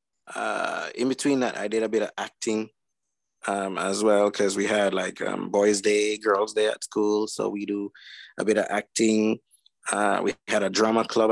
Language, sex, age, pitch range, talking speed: English, male, 20-39, 100-115 Hz, 195 wpm